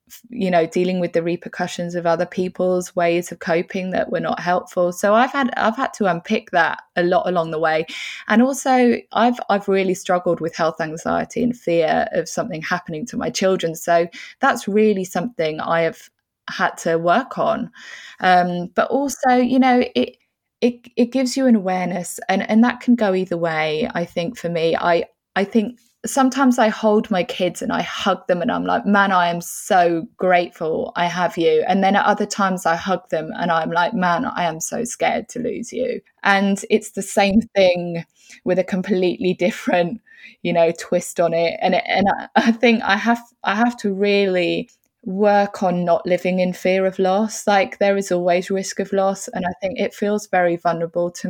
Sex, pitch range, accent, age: female, 175-225 Hz, British, 20-39